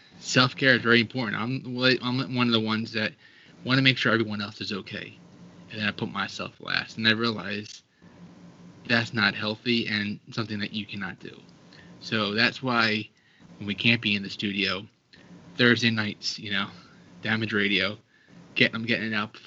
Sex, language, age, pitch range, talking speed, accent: male, English, 20-39, 105-115 Hz, 180 wpm, American